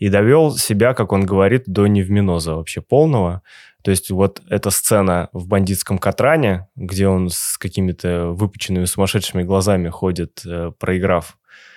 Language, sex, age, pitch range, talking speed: Russian, male, 20-39, 95-115 Hz, 140 wpm